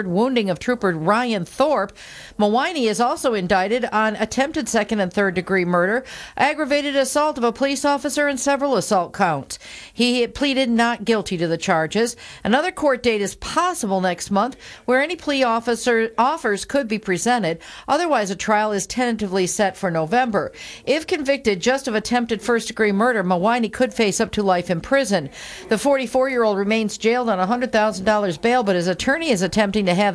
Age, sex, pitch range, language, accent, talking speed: 50-69, female, 200-250 Hz, English, American, 175 wpm